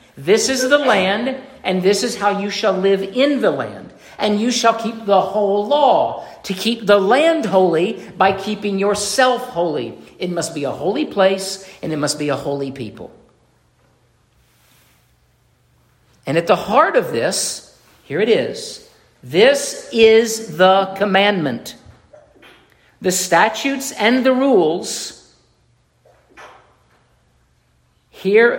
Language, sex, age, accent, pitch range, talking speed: English, male, 50-69, American, 160-230 Hz, 130 wpm